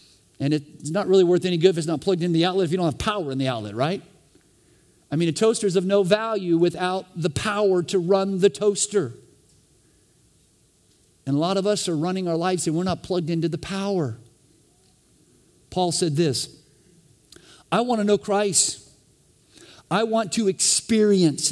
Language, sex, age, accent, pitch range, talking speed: English, male, 50-69, American, 145-195 Hz, 185 wpm